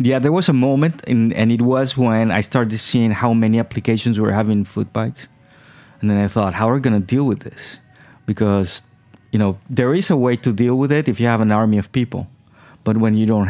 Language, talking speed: English, 240 wpm